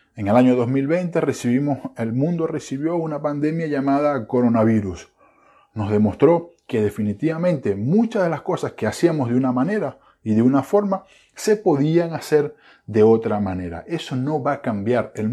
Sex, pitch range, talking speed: male, 110-150 Hz, 160 wpm